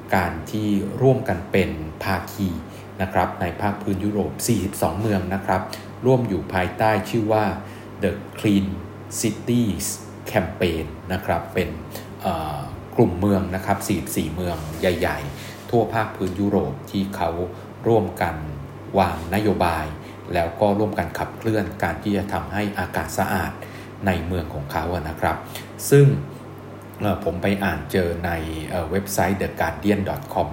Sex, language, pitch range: male, Thai, 85-105 Hz